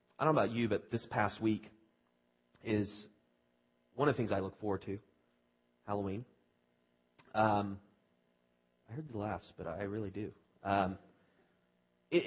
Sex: male